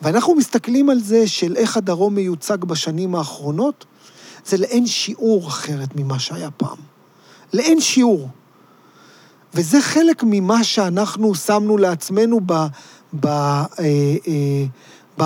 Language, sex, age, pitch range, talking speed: Hebrew, male, 40-59, 165-220 Hz, 105 wpm